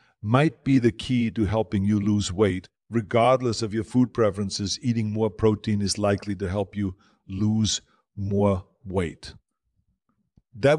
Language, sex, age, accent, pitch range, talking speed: English, male, 50-69, German, 100-115 Hz, 145 wpm